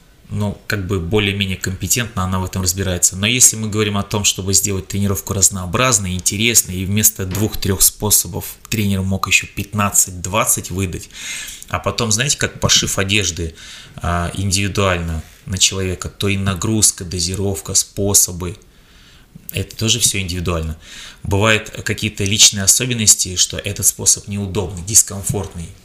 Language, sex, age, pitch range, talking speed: Russian, male, 20-39, 95-110 Hz, 130 wpm